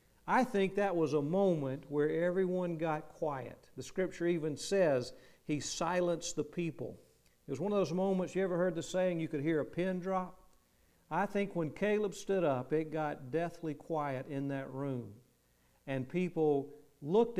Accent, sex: American, male